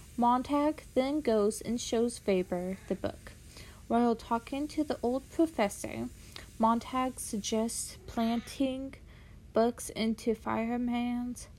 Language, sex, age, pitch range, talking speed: English, female, 30-49, 185-240 Hz, 105 wpm